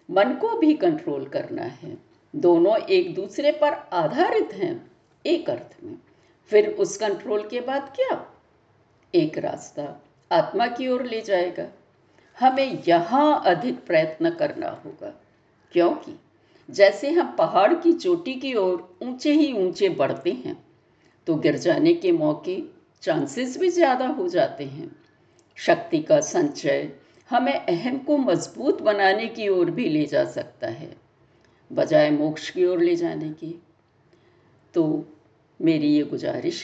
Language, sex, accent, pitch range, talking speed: Hindi, female, native, 210-335 Hz, 140 wpm